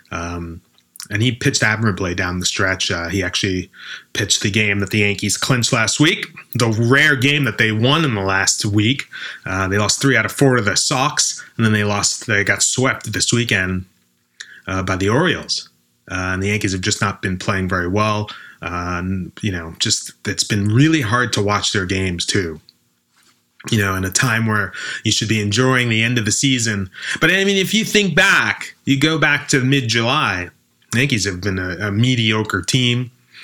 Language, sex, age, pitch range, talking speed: English, male, 20-39, 95-120 Hz, 205 wpm